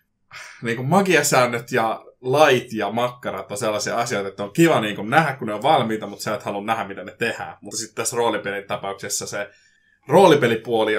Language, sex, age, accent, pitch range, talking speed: Finnish, male, 20-39, native, 100-125 Hz, 175 wpm